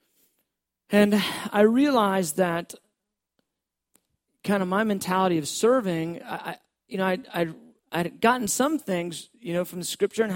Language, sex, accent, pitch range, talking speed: English, male, American, 170-220 Hz, 150 wpm